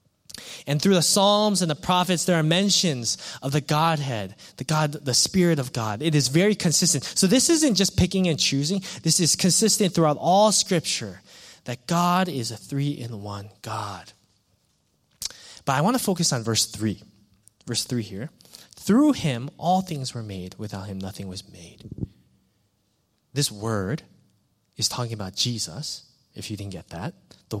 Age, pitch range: 20-39, 110-175 Hz